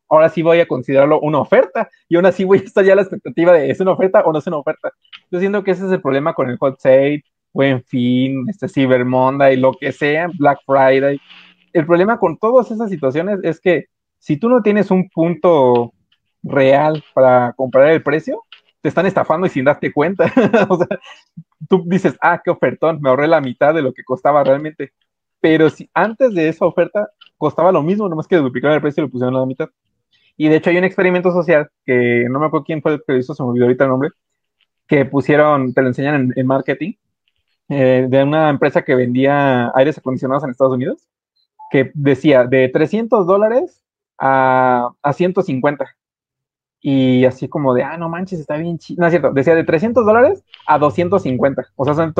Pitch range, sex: 130-175 Hz, male